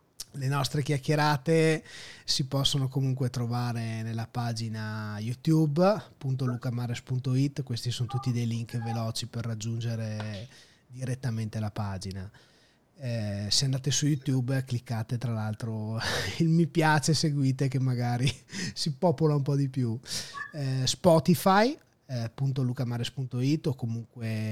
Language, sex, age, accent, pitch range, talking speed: Italian, male, 20-39, native, 110-135 Hz, 110 wpm